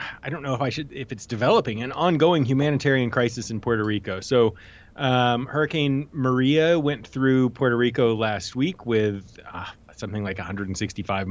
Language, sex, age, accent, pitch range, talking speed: English, male, 30-49, American, 105-135 Hz, 165 wpm